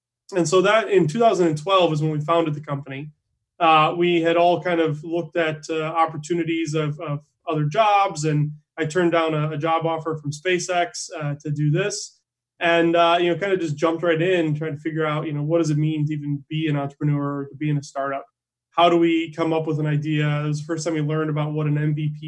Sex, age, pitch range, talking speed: male, 20-39, 150-170 Hz, 240 wpm